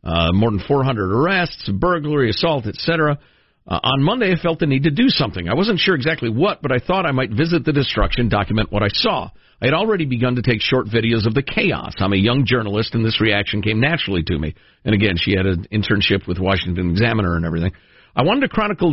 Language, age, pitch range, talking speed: English, 50-69, 110-165 Hz, 225 wpm